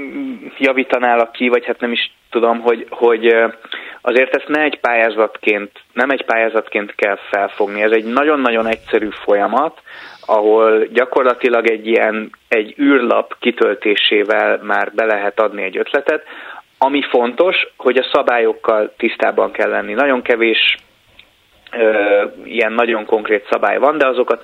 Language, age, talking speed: Hungarian, 30-49, 130 wpm